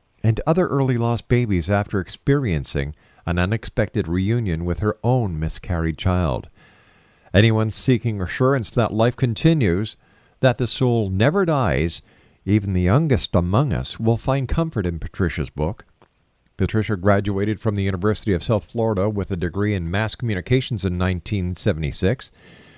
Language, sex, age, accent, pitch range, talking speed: English, male, 50-69, American, 95-125 Hz, 140 wpm